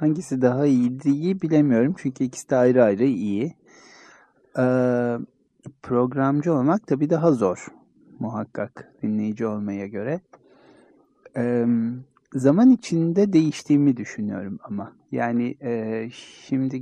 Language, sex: Turkish, male